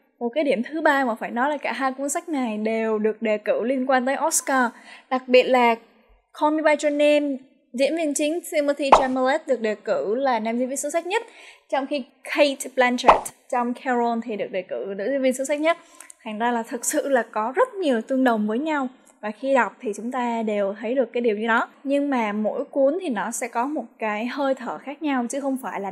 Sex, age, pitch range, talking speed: female, 10-29, 230-285 Hz, 245 wpm